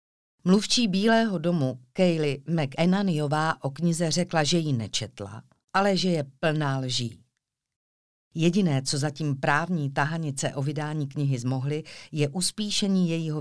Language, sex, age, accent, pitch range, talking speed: Czech, female, 50-69, native, 135-175 Hz, 125 wpm